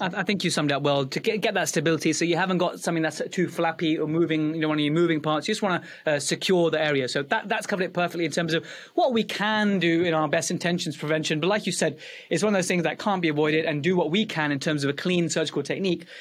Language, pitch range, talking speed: English, 165-210 Hz, 285 wpm